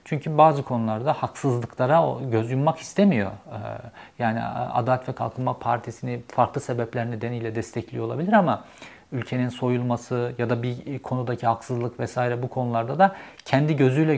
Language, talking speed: Turkish, 130 wpm